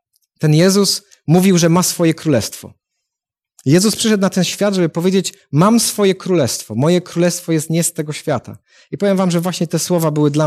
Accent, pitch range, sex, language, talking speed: native, 145-185 Hz, male, Polish, 190 wpm